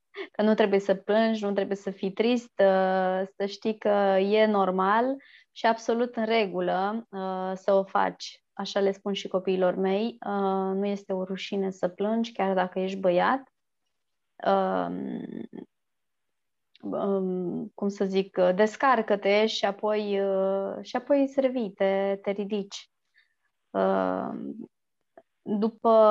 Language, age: Romanian, 20-39